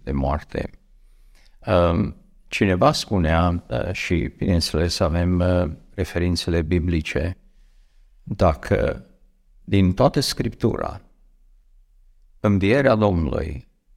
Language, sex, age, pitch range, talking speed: Romanian, male, 50-69, 85-110 Hz, 65 wpm